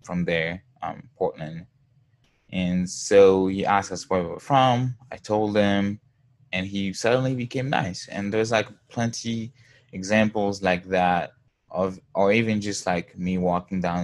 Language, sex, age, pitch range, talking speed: English, male, 10-29, 90-120 Hz, 155 wpm